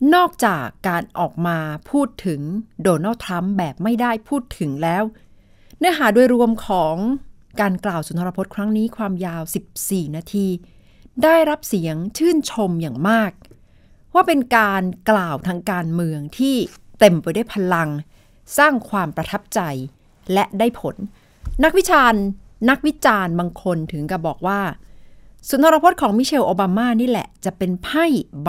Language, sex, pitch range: Thai, female, 170-225 Hz